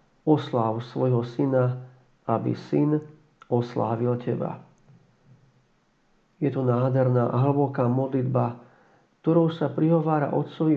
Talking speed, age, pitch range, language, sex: 95 wpm, 50-69, 125-145 Hz, Slovak, male